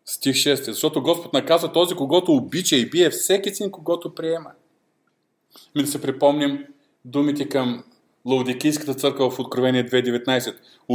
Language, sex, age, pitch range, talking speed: Bulgarian, male, 40-59, 120-165 Hz, 135 wpm